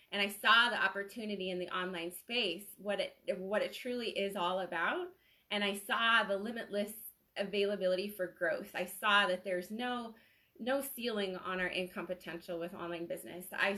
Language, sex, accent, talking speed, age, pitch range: English, female, American, 175 wpm, 20-39, 185-225 Hz